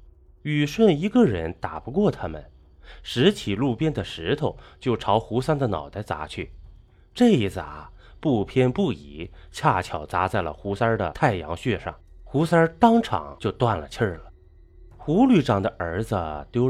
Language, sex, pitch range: Chinese, male, 90-135 Hz